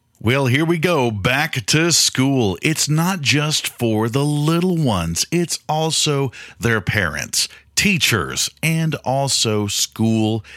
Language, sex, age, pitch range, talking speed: English, male, 40-59, 95-125 Hz, 125 wpm